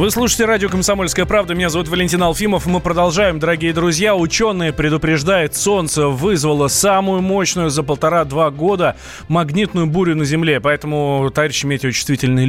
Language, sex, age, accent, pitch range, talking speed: Russian, male, 20-39, native, 145-195 Hz, 140 wpm